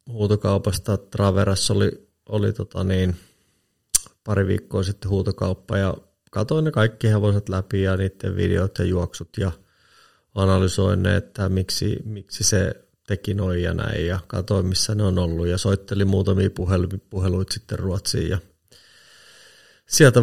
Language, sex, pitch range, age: Finnish, male, 95-110 Hz, 30-49